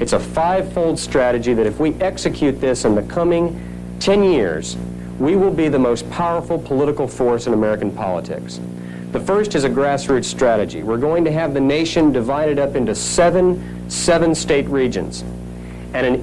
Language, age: English, 50-69